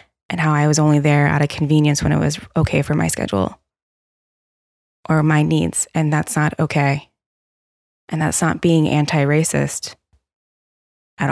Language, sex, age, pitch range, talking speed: English, female, 10-29, 145-170 Hz, 155 wpm